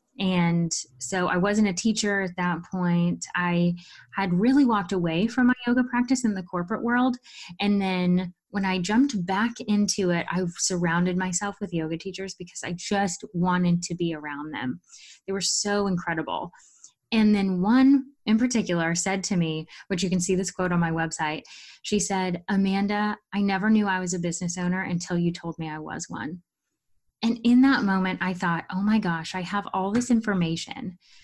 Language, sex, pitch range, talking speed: English, female, 175-215 Hz, 185 wpm